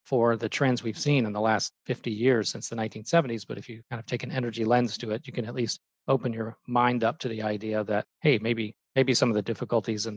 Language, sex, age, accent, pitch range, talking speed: English, male, 40-59, American, 110-125 Hz, 260 wpm